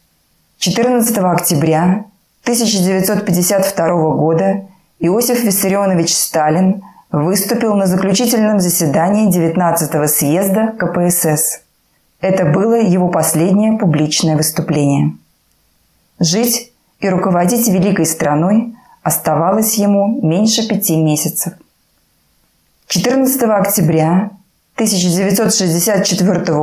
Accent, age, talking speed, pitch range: native, 20-39, 75 wpm, 165-210 Hz